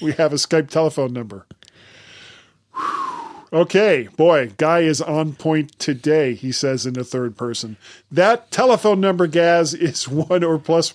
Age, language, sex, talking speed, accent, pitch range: 40-59, English, male, 150 wpm, American, 135-170 Hz